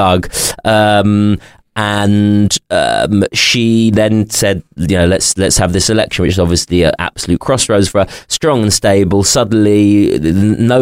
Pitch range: 90-105 Hz